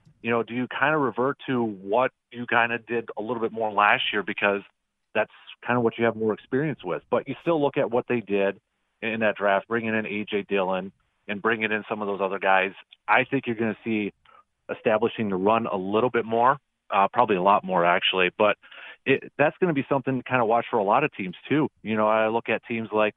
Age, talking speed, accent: 30-49, 245 wpm, American